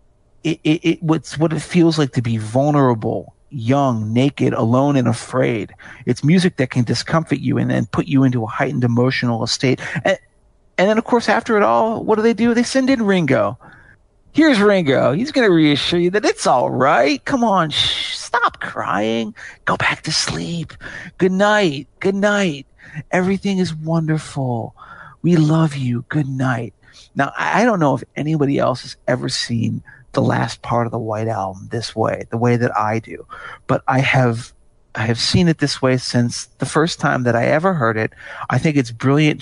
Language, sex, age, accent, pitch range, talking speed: English, male, 40-59, American, 120-165 Hz, 190 wpm